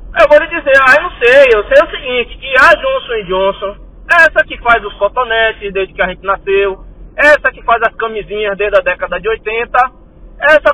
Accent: Brazilian